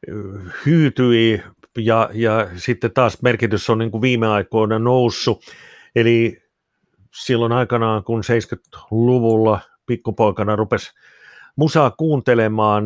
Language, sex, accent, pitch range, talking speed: Finnish, male, native, 110-125 Hz, 100 wpm